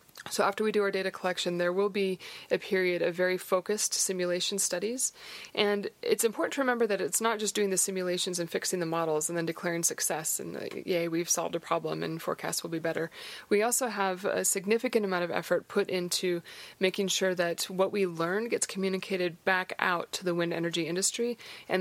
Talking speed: 205 wpm